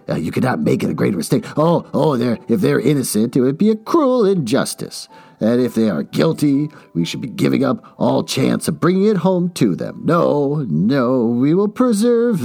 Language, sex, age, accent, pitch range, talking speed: English, male, 50-69, American, 130-215 Hz, 200 wpm